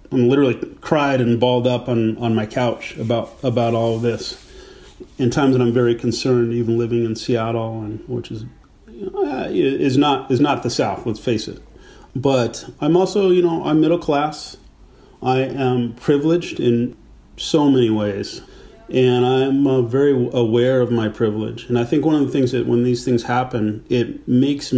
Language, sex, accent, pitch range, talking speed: English, male, American, 110-130 Hz, 185 wpm